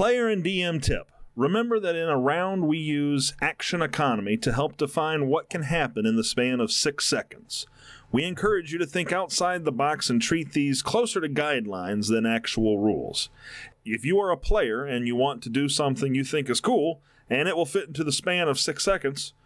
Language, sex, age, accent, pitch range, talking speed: English, male, 40-59, American, 125-175 Hz, 205 wpm